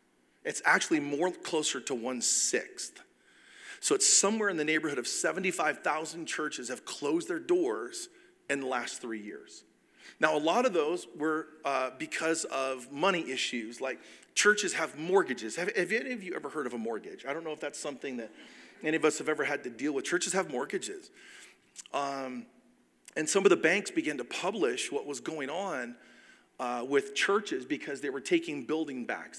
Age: 40-59